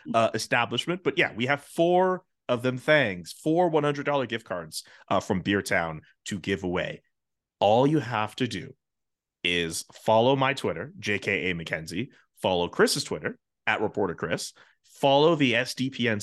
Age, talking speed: 30-49, 160 wpm